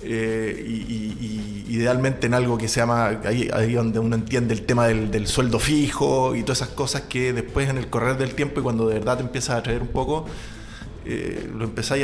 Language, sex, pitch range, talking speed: Spanish, male, 115-145 Hz, 225 wpm